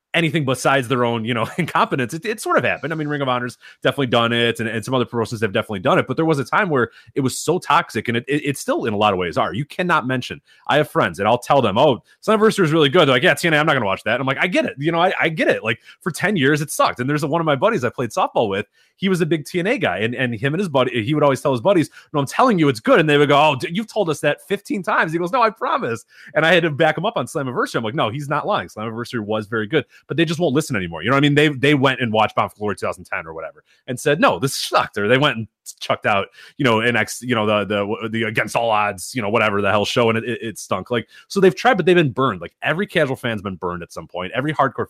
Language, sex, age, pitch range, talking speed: English, male, 30-49, 115-155 Hz, 320 wpm